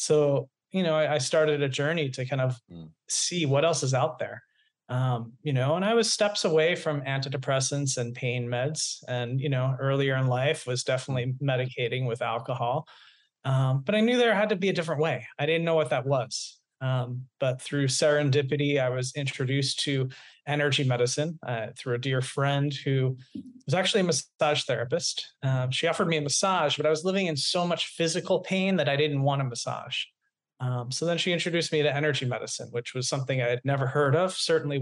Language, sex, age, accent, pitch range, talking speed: English, male, 30-49, American, 125-150 Hz, 200 wpm